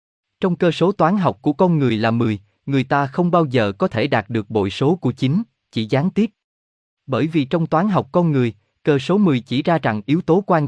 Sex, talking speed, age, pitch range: male, 235 wpm, 20-39, 115-170 Hz